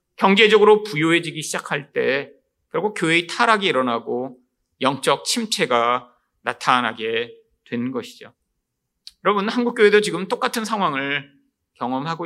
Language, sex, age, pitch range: Korean, male, 40-59, 160-240 Hz